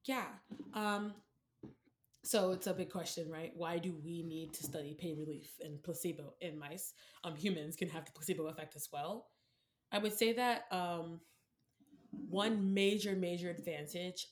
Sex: female